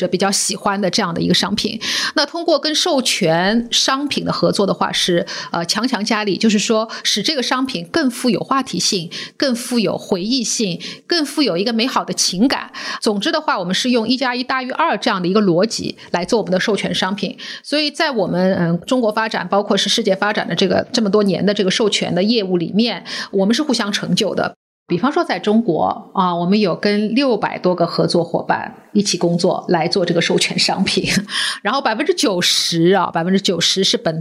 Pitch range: 185-245 Hz